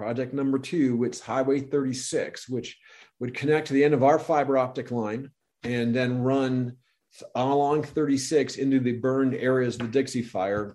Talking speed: 165 wpm